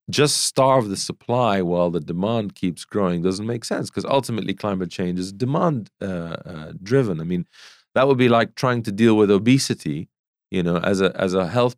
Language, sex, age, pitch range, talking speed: English, male, 40-59, 90-115 Hz, 195 wpm